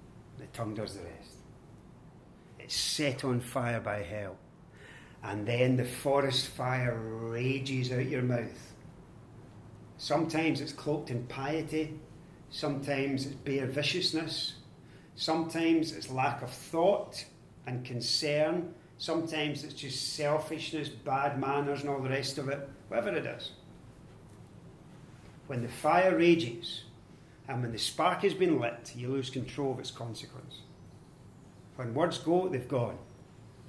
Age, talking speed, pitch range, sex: 40-59, 130 wpm, 130-205 Hz, male